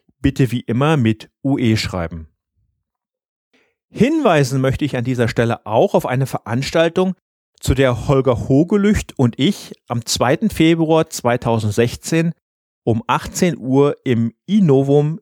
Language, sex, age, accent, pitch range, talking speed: German, male, 40-59, German, 115-155 Hz, 120 wpm